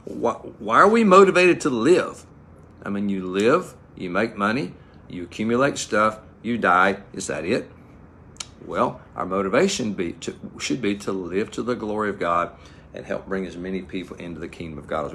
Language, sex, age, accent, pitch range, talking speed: English, male, 50-69, American, 95-130 Hz, 190 wpm